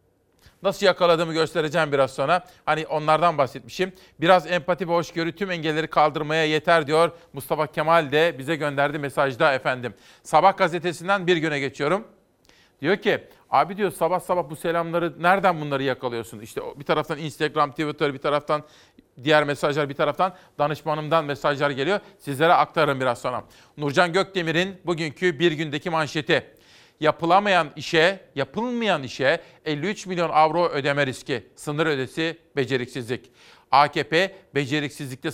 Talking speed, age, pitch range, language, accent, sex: 130 wpm, 40-59, 145-175 Hz, Turkish, native, male